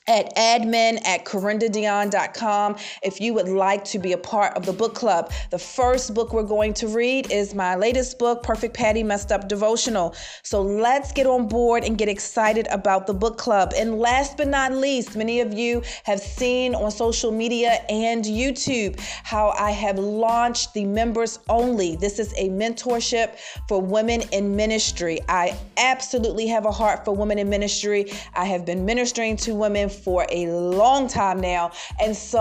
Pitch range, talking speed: 200-230 Hz, 180 wpm